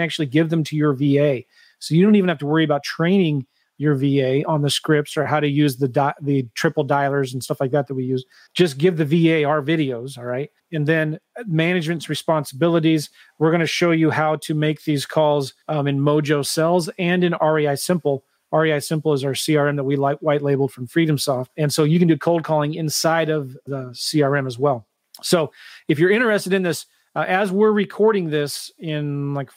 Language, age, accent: English, 30-49, American